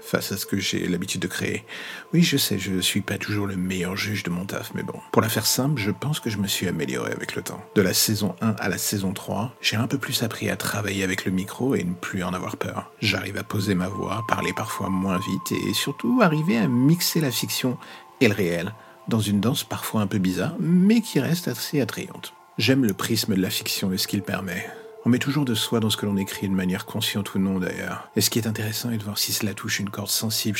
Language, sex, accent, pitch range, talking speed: French, male, French, 95-115 Hz, 260 wpm